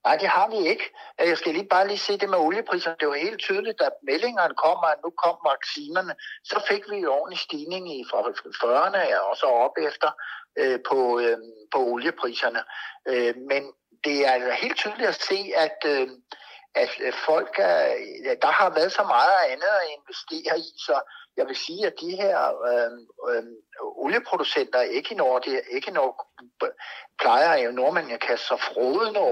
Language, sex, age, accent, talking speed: Danish, male, 60-79, native, 160 wpm